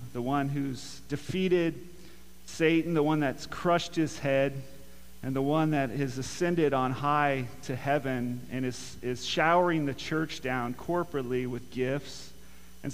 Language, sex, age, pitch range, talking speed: English, male, 40-59, 135-160 Hz, 150 wpm